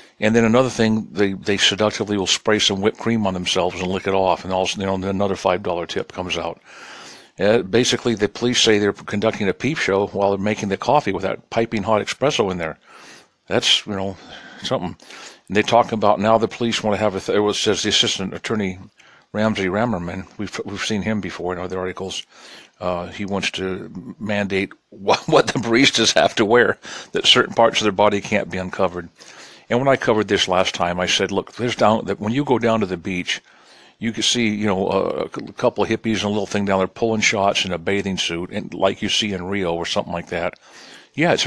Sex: male